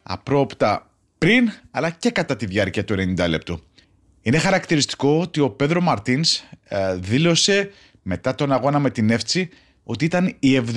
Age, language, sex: 30-49, Greek, male